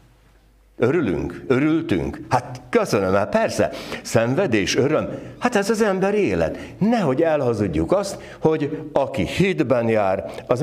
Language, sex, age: Hungarian, male, 60-79